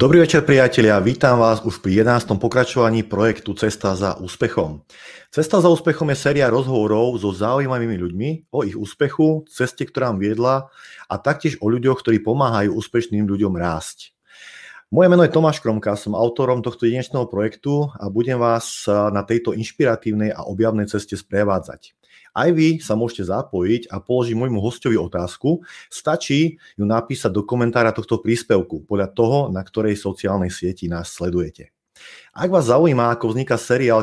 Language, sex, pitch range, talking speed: Slovak, male, 105-125 Hz, 155 wpm